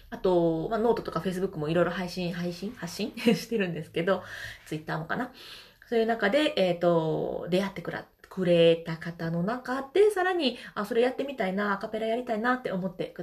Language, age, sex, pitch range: Japanese, 20-39, female, 170-245 Hz